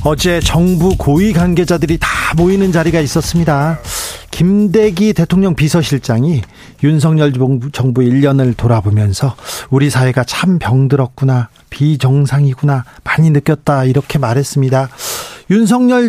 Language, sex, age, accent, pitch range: Korean, male, 40-59, native, 135-175 Hz